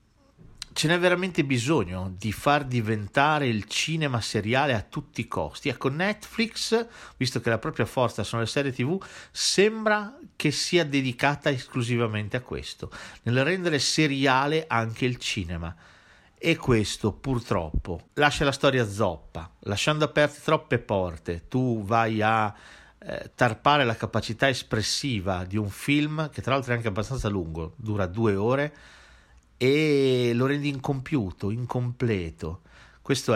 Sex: male